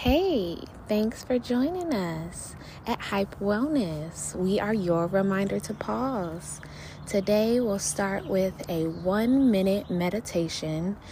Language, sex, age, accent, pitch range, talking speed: English, female, 20-39, American, 160-210 Hz, 120 wpm